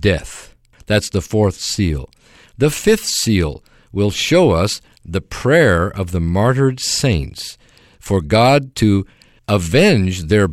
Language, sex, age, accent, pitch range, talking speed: English, male, 50-69, American, 90-125 Hz, 125 wpm